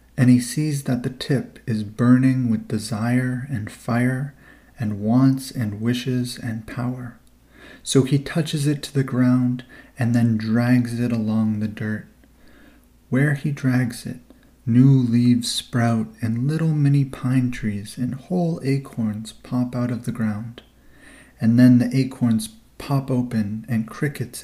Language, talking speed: English, 145 wpm